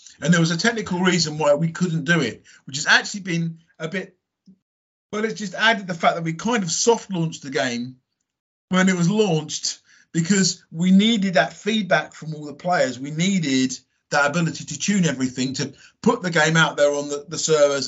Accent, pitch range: British, 140-190 Hz